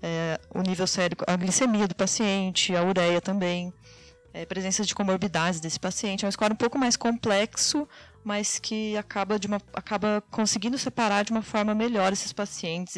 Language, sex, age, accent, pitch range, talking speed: Portuguese, female, 20-39, Brazilian, 185-225 Hz, 175 wpm